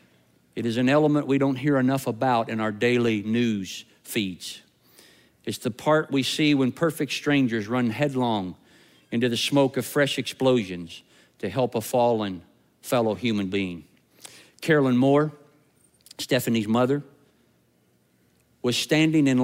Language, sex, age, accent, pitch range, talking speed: English, male, 50-69, American, 115-145 Hz, 135 wpm